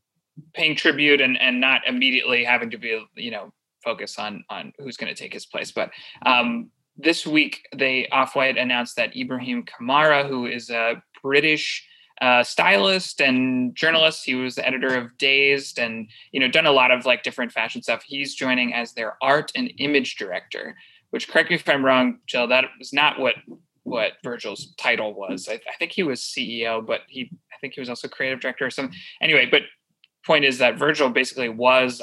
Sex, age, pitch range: male, 20-39, 125-145 Hz